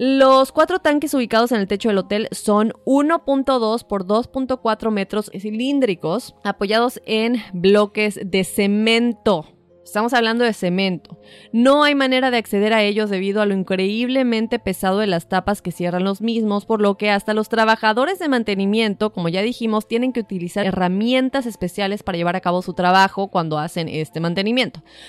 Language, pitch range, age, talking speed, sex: Spanish, 180-230 Hz, 20-39, 165 wpm, female